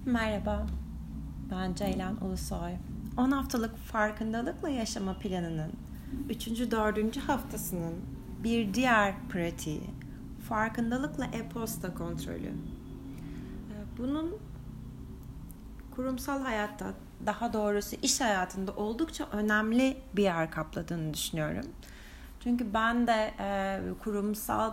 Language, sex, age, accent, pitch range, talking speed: Turkish, female, 30-49, native, 190-245 Hz, 85 wpm